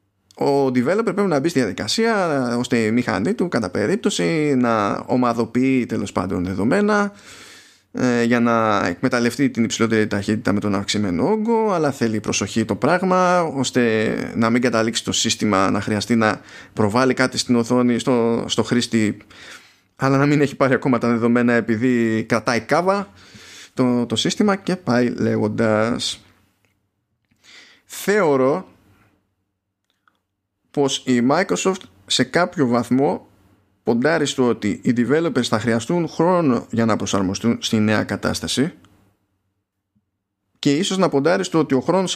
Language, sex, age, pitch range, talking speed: Greek, male, 20-39, 105-135 Hz, 135 wpm